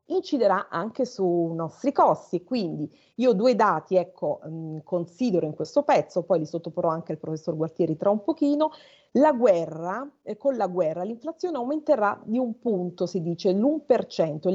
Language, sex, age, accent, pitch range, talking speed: Italian, female, 30-49, native, 175-275 Hz, 155 wpm